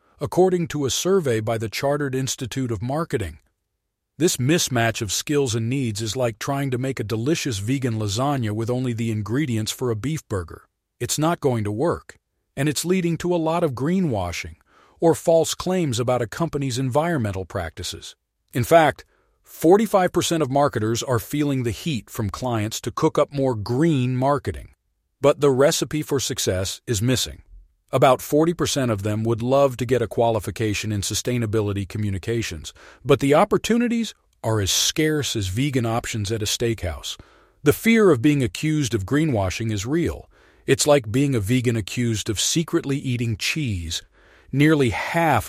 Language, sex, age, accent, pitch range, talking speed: English, male, 40-59, American, 105-145 Hz, 165 wpm